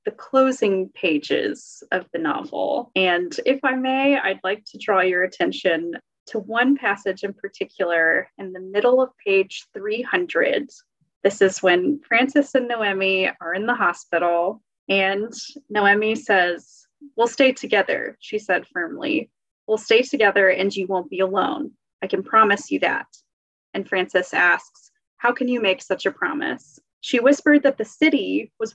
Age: 20-39